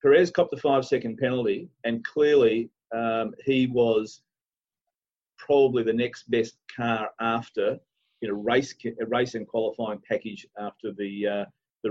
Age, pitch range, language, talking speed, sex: 40-59, 115-145 Hz, English, 145 wpm, male